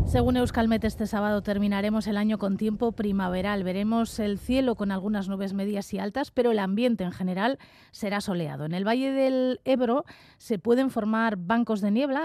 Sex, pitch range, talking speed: female, 190-240 Hz, 180 wpm